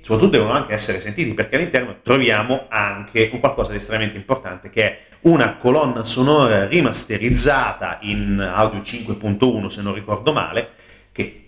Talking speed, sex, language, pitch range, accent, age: 145 wpm, male, Italian, 100-125 Hz, native, 40-59